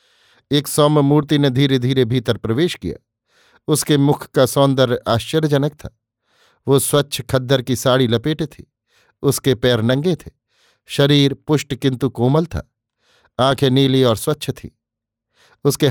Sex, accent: male, native